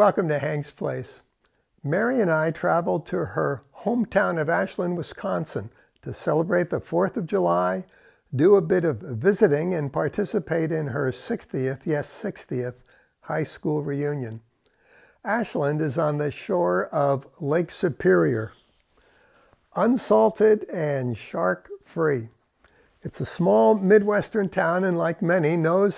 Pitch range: 145-195 Hz